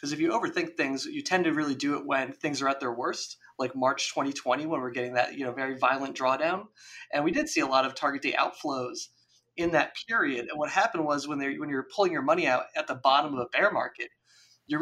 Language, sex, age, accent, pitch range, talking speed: English, male, 20-39, American, 130-170 Hz, 245 wpm